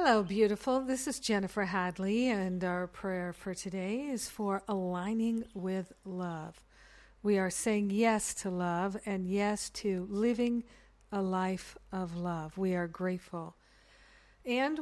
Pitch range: 180-205 Hz